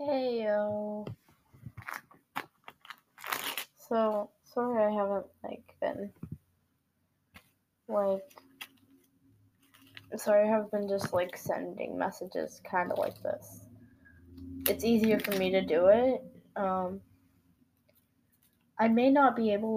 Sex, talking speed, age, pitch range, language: female, 105 wpm, 10-29, 195-230 Hz, English